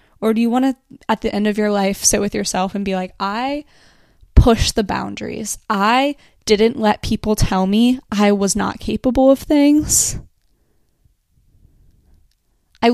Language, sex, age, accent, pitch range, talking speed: English, female, 10-29, American, 205-255 Hz, 160 wpm